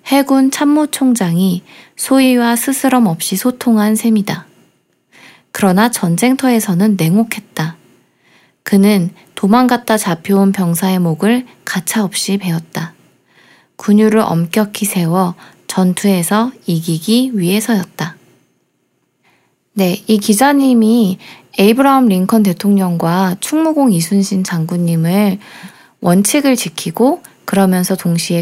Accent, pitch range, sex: native, 180-240 Hz, female